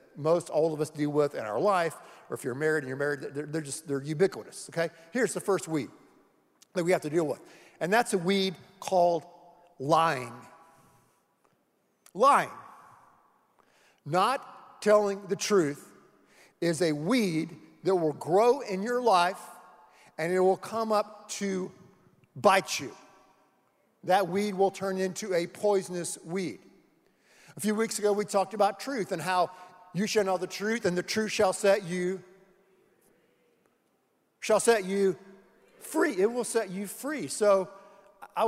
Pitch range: 170-210 Hz